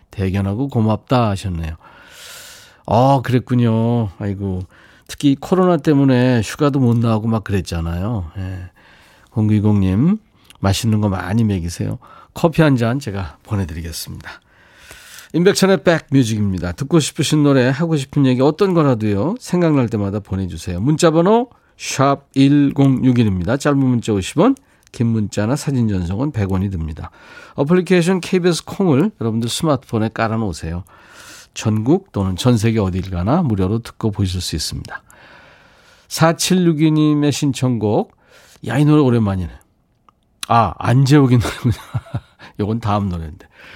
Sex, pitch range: male, 100-145 Hz